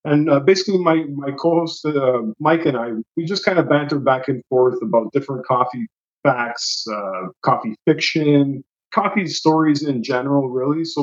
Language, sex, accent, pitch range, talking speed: English, male, American, 140-170 Hz, 170 wpm